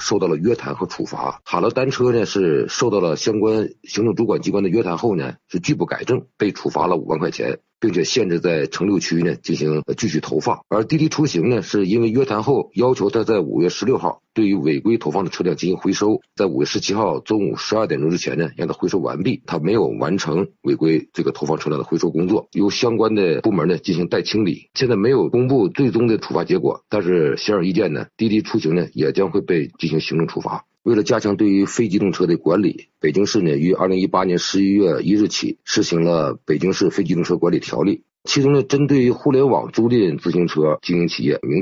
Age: 50-69